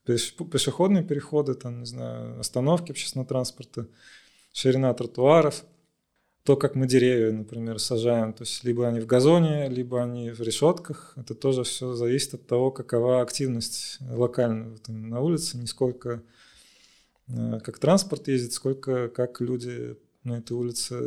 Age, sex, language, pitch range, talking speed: 20-39, male, Russian, 120-140 Hz, 130 wpm